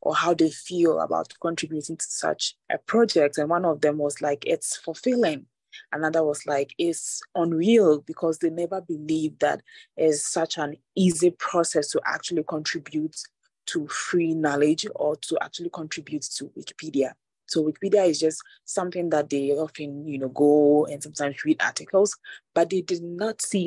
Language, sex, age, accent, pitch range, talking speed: English, female, 20-39, Nigerian, 150-180 Hz, 165 wpm